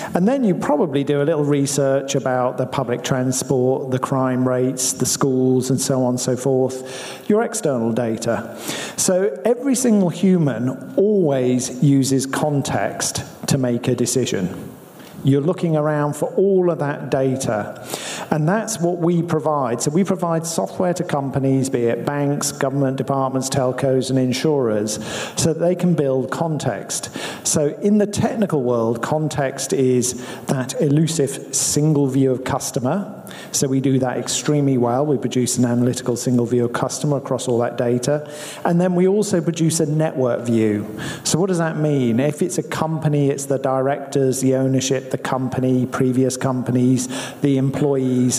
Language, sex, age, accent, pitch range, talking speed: English, male, 50-69, British, 130-155 Hz, 160 wpm